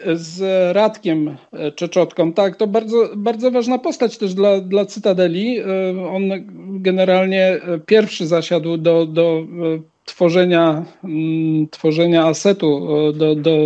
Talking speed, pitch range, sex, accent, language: 105 wpm, 180-235 Hz, male, native, Polish